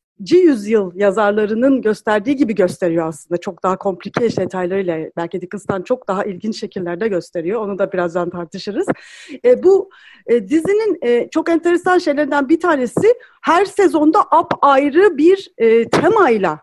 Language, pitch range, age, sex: Turkish, 210-340 Hz, 40-59, female